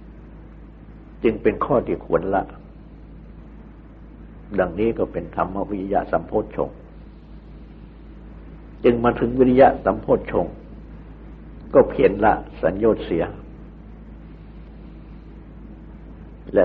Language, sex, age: Thai, male, 60-79